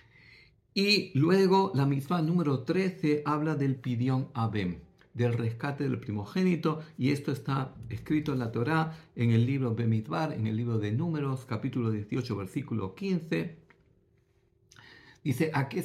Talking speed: 140 wpm